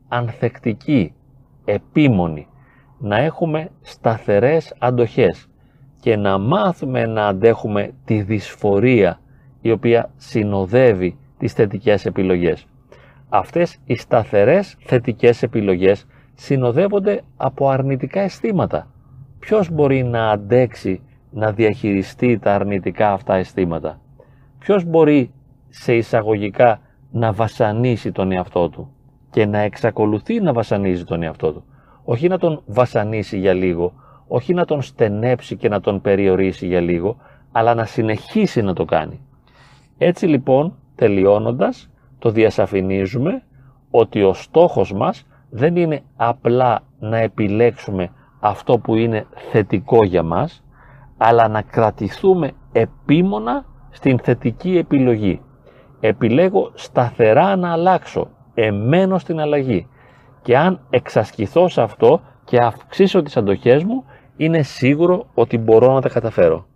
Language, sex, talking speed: Greek, male, 115 wpm